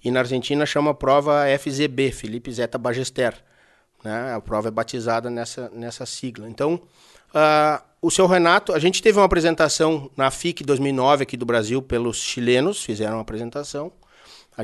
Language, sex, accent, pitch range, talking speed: Portuguese, male, Brazilian, 120-160 Hz, 165 wpm